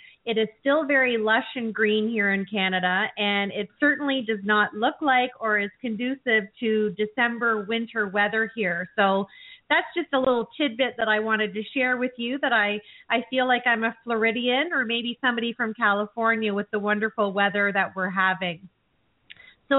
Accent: American